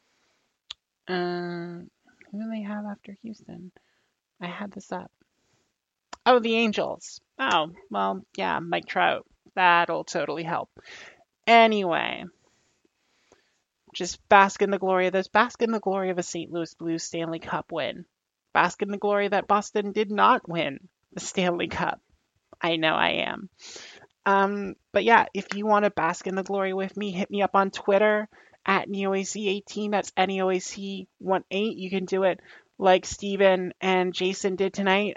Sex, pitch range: male, 180-205 Hz